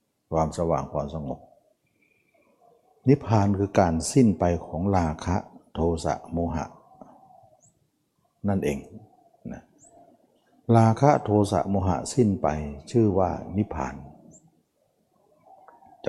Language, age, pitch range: Thai, 60-79, 80-110 Hz